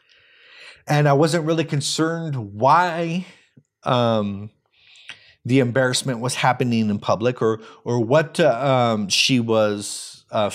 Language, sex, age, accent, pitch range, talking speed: English, male, 30-49, American, 125-160 Hz, 120 wpm